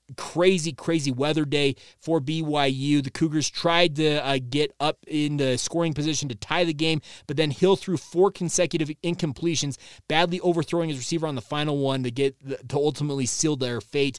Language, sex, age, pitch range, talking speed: English, male, 20-39, 135-175 Hz, 185 wpm